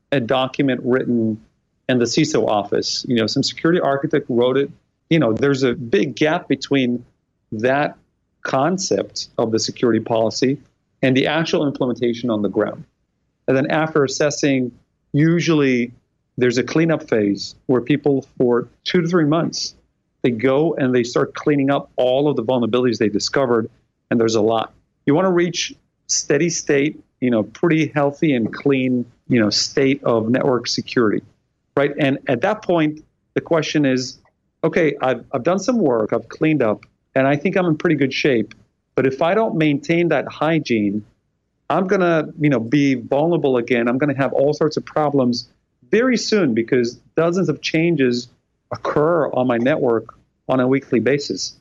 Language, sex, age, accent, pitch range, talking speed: English, male, 40-59, American, 120-155 Hz, 170 wpm